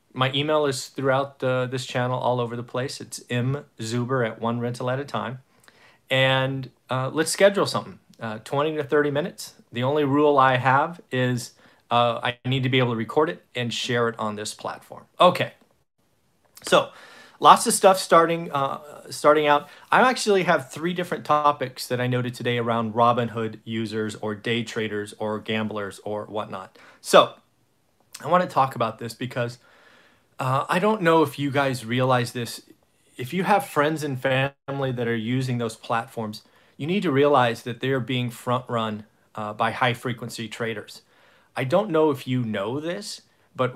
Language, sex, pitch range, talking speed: English, male, 115-140 Hz, 175 wpm